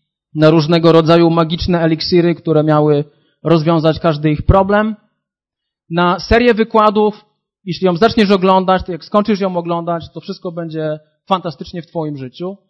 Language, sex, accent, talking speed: Polish, male, native, 140 wpm